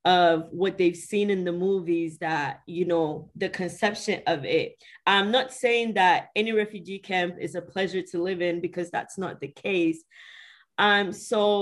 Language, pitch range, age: English, 175-210 Hz, 20-39